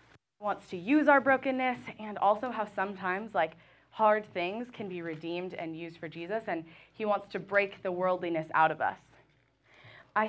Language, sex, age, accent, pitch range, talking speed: English, female, 20-39, American, 180-240 Hz, 175 wpm